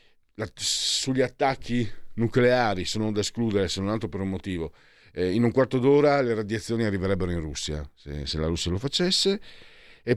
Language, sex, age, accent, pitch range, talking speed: Italian, male, 50-69, native, 85-125 Hz, 170 wpm